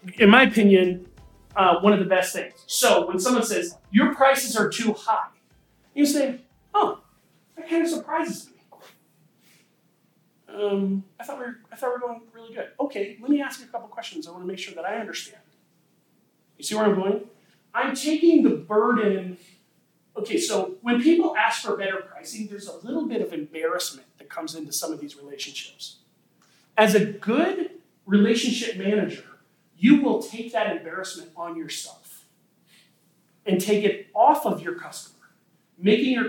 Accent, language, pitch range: American, English, 180-245 Hz